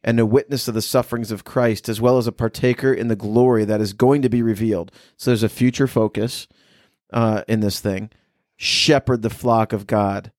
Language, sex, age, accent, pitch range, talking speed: English, male, 30-49, American, 110-130 Hz, 210 wpm